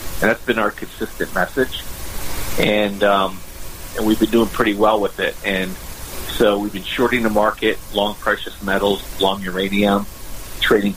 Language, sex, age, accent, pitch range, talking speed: English, male, 50-69, American, 100-115 Hz, 160 wpm